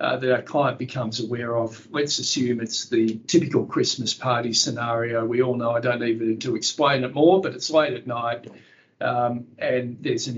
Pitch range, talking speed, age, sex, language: 120-145 Hz, 195 wpm, 50-69, male, English